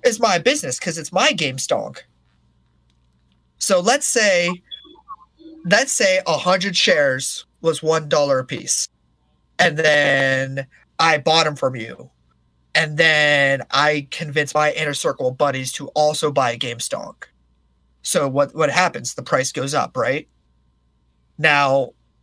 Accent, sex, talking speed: American, male, 140 wpm